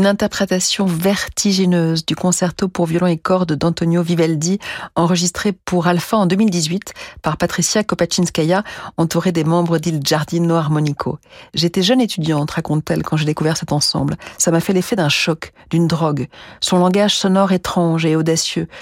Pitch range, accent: 160-190 Hz, French